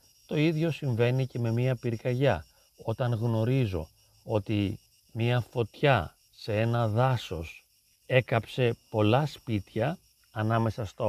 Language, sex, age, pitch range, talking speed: Greek, male, 40-59, 105-135 Hz, 110 wpm